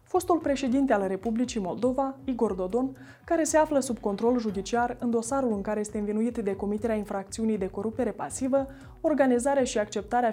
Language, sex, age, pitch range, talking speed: Romanian, female, 20-39, 210-275 Hz, 165 wpm